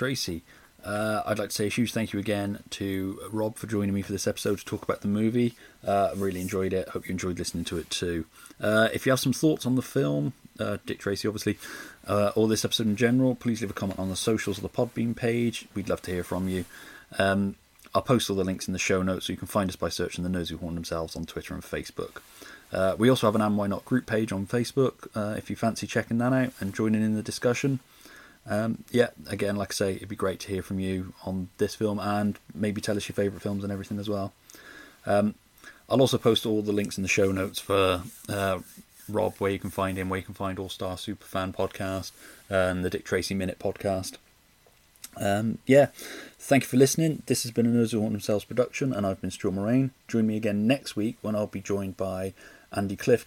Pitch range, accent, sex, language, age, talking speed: 95-110 Hz, British, male, English, 30-49, 240 wpm